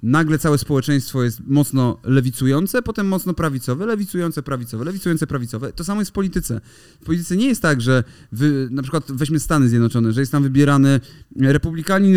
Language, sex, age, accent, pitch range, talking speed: Polish, male, 30-49, native, 135-170 Hz, 170 wpm